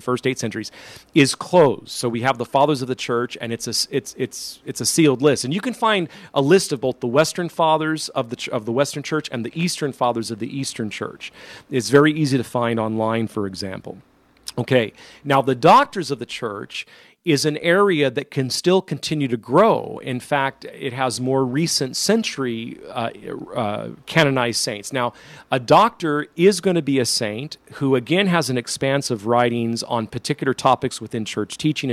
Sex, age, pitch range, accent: male, 40-59, 120-150 Hz, American